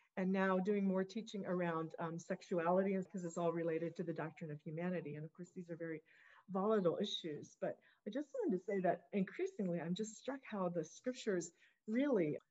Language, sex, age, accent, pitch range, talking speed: English, female, 40-59, American, 175-225 Hz, 190 wpm